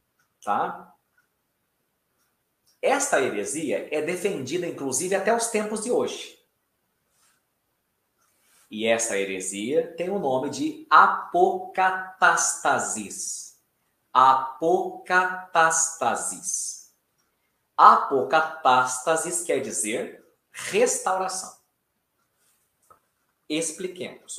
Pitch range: 120-190 Hz